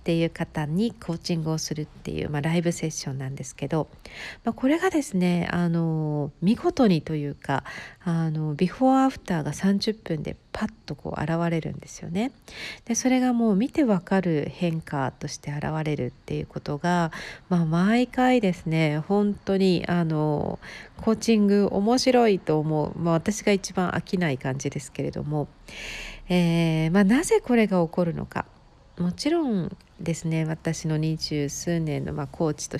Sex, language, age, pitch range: female, Japanese, 50-69, 155-215 Hz